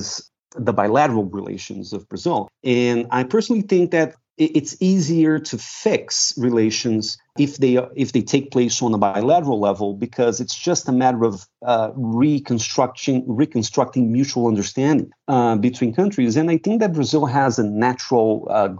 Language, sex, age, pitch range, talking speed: English, male, 40-59, 105-140 Hz, 155 wpm